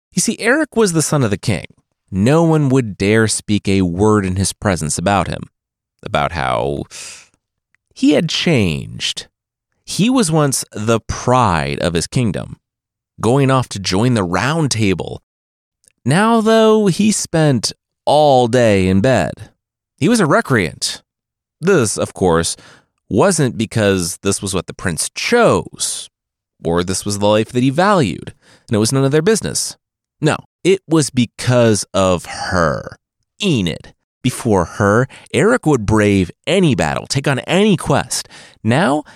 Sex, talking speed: male, 150 wpm